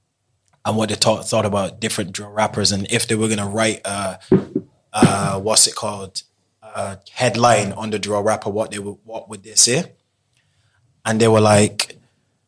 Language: English